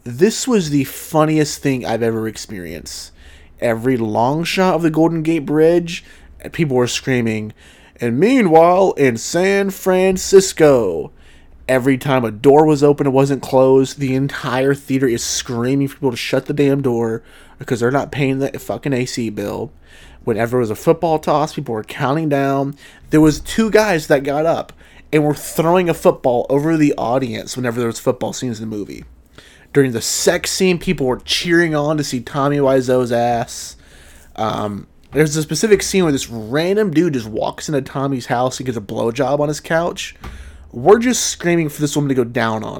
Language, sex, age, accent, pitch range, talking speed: English, male, 30-49, American, 115-155 Hz, 180 wpm